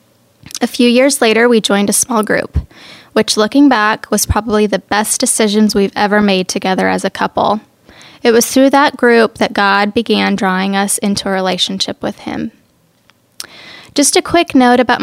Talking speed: 175 wpm